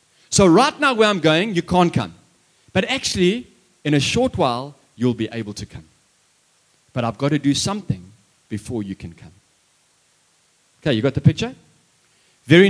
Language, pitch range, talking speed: English, 120-180 Hz, 170 wpm